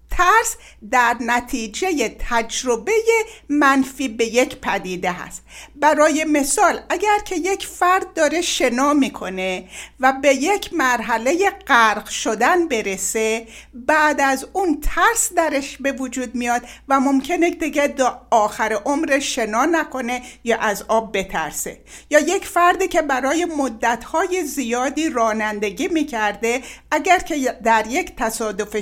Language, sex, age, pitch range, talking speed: Persian, female, 60-79, 225-340 Hz, 120 wpm